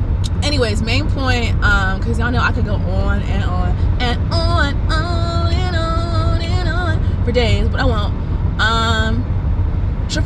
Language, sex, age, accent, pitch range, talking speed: English, female, 20-39, American, 85-95 Hz, 160 wpm